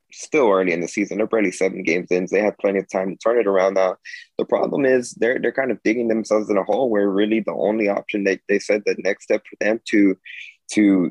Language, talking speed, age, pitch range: English, 255 wpm, 20-39, 95-105 Hz